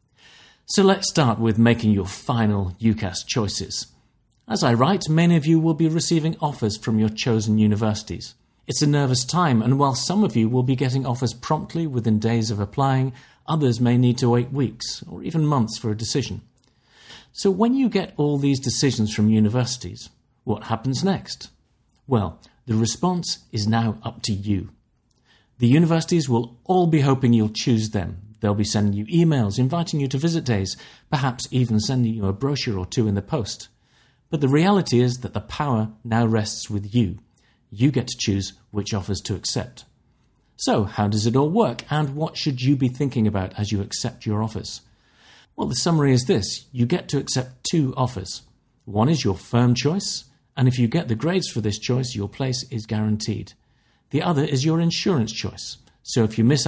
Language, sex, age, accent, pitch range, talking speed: English, male, 40-59, British, 110-145 Hz, 190 wpm